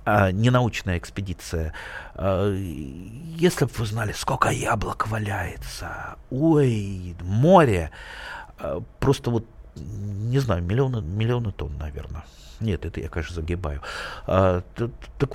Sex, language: male, Russian